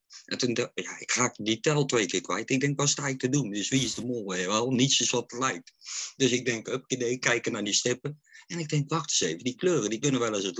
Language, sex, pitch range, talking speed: Dutch, male, 95-125 Hz, 275 wpm